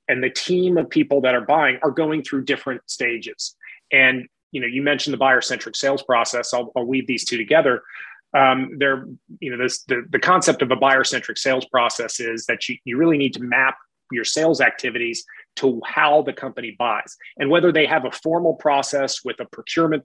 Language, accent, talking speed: English, American, 200 wpm